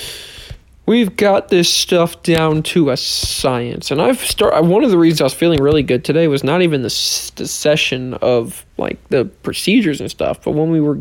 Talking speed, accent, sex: 205 wpm, American, male